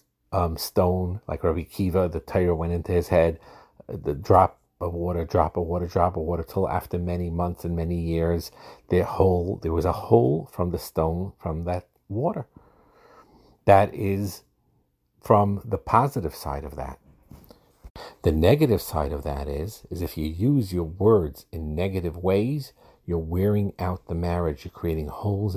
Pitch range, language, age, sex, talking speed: 80-100 Hz, English, 50-69, male, 165 wpm